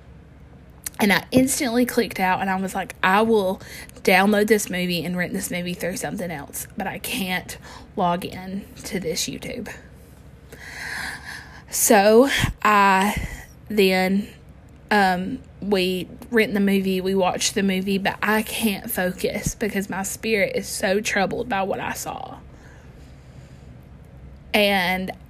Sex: female